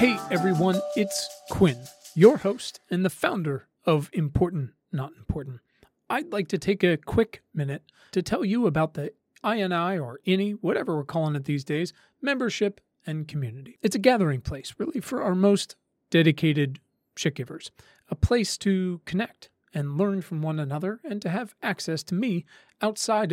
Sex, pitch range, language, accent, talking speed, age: male, 150-200 Hz, English, American, 165 wpm, 40-59